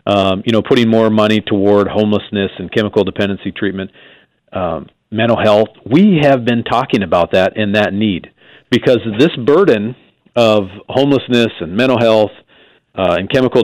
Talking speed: 155 wpm